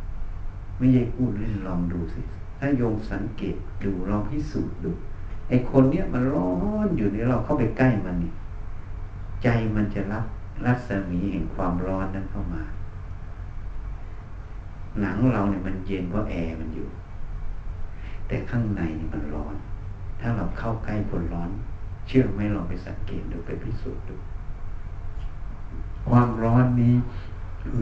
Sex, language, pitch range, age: male, Thai, 90-115 Hz, 60-79